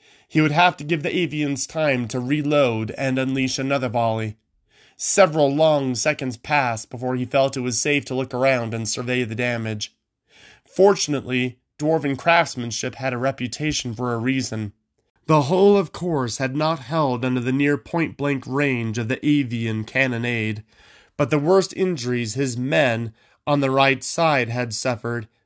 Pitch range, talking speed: 120-155 Hz, 160 wpm